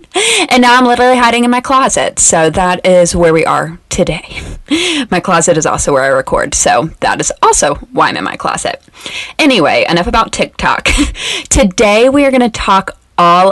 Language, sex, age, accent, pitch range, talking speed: English, female, 20-39, American, 165-225 Hz, 185 wpm